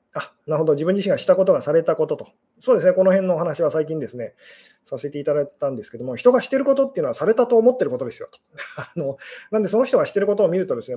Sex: male